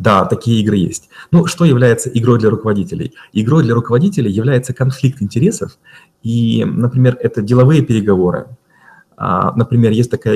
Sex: male